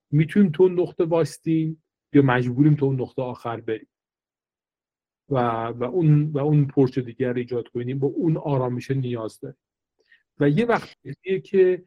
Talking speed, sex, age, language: 160 wpm, male, 40-59, Persian